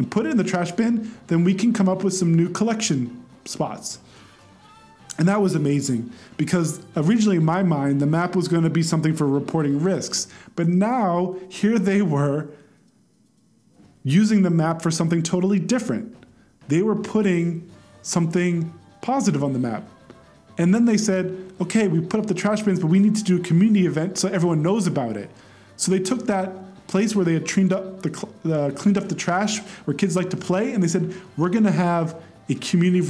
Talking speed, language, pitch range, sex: 200 wpm, English, 155-190 Hz, male